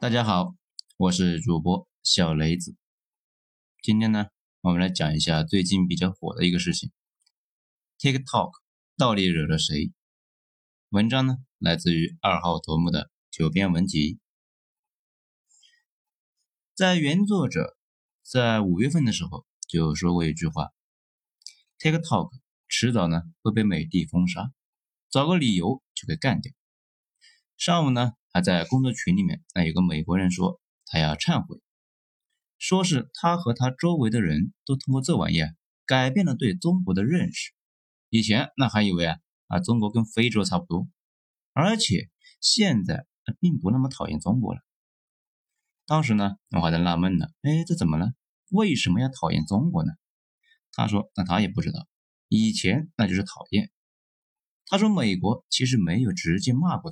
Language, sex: Chinese, male